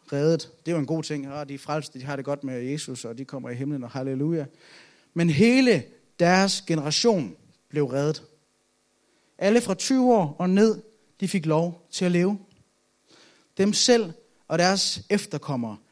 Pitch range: 145-195 Hz